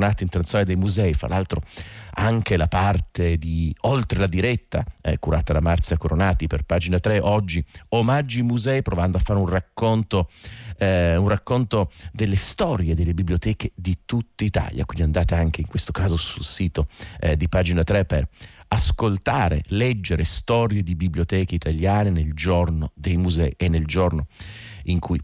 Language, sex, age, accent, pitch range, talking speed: Italian, male, 50-69, native, 85-105 Hz, 150 wpm